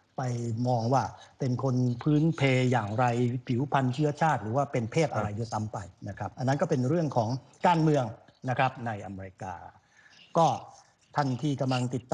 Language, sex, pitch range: Thai, male, 115-145 Hz